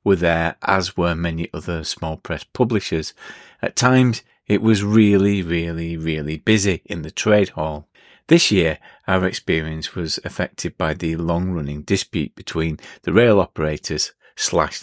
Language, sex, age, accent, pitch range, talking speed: English, male, 40-59, British, 80-110 Hz, 145 wpm